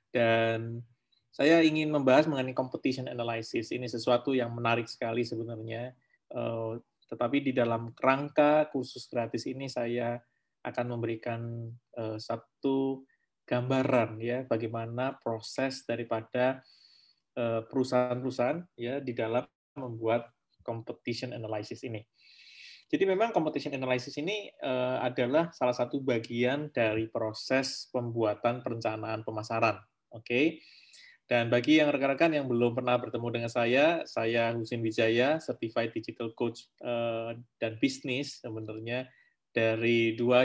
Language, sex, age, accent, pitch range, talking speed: Indonesian, male, 20-39, native, 115-130 Hz, 115 wpm